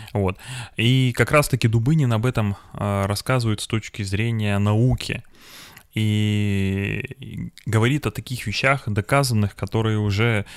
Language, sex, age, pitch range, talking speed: Russian, male, 20-39, 100-120 Hz, 110 wpm